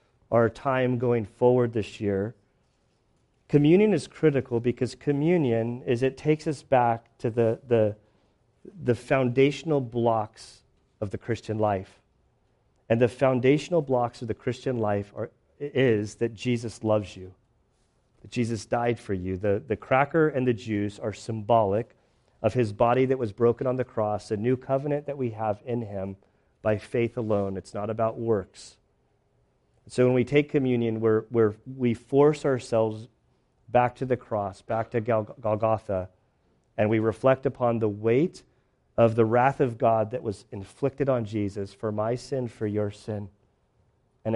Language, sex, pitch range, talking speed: English, male, 105-130 Hz, 160 wpm